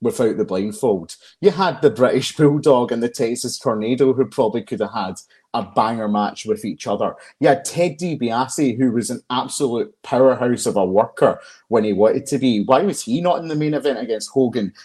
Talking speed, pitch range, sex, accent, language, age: 200 wpm, 130-165 Hz, male, British, English, 30-49